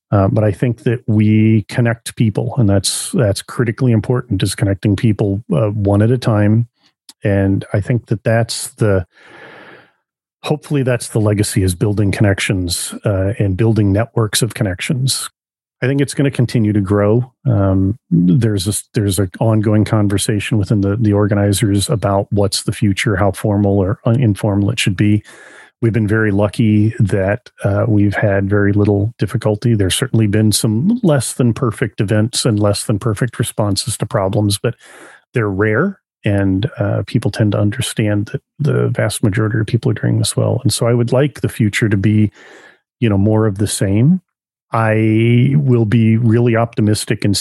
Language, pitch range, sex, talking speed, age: English, 105-120 Hz, male, 175 wpm, 40-59